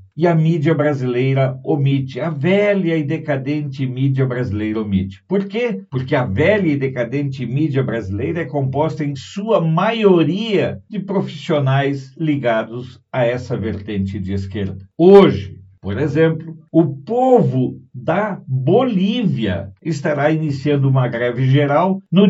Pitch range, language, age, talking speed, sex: 130-190 Hz, Portuguese, 60-79, 125 wpm, male